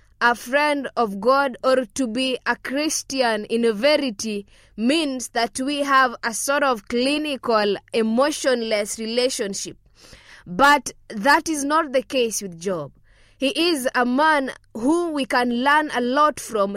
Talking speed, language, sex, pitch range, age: 145 wpm, English, female, 225-280 Hz, 20-39